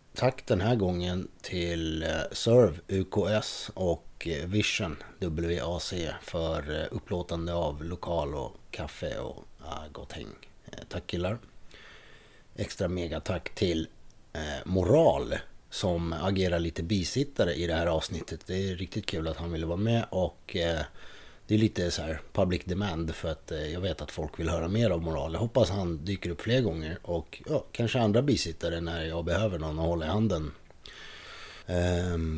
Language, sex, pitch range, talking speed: English, male, 80-105 Hz, 150 wpm